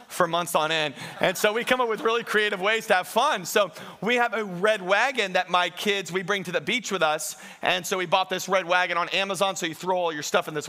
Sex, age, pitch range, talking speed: male, 40-59, 185-225 Hz, 275 wpm